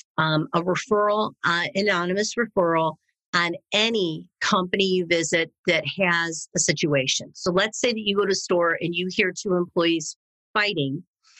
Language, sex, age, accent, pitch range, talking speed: English, female, 40-59, American, 165-200 Hz, 155 wpm